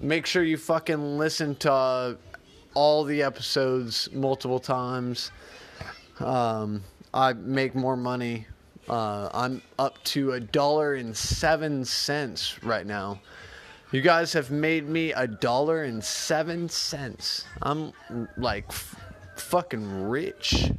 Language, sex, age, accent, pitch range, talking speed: English, male, 20-39, American, 115-145 Hz, 125 wpm